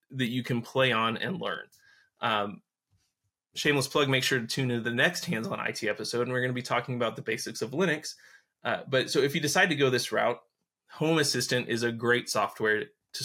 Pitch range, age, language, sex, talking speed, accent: 120-150 Hz, 20-39, English, male, 215 wpm, American